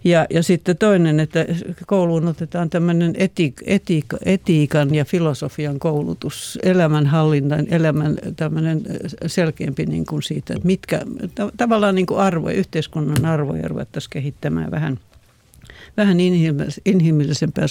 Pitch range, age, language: 150-180 Hz, 60-79, Finnish